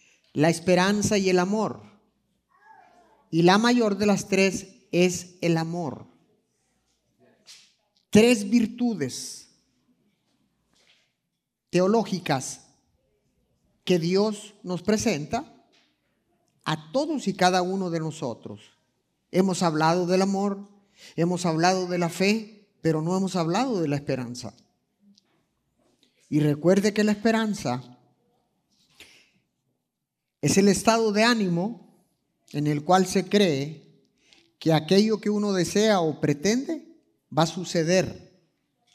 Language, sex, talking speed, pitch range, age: Spanish, male, 105 wpm, 165-215 Hz, 50-69